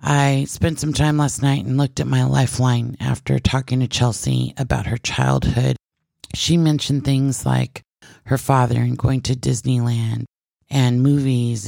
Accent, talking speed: American, 155 wpm